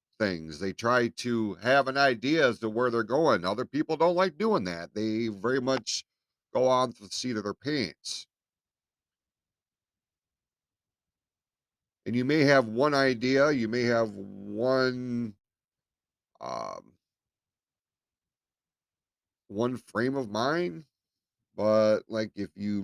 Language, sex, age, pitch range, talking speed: English, male, 50-69, 105-150 Hz, 125 wpm